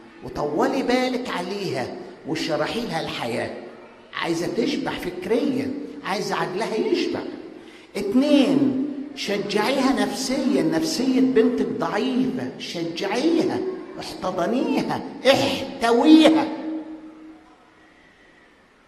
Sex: male